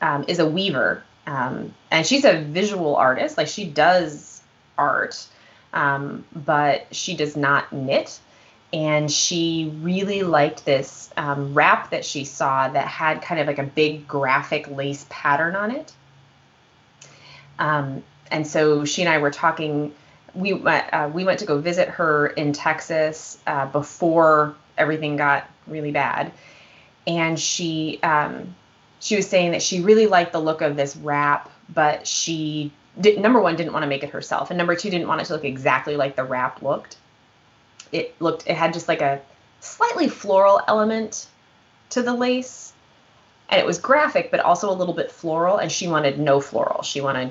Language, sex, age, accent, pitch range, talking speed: English, female, 20-39, American, 145-175 Hz, 170 wpm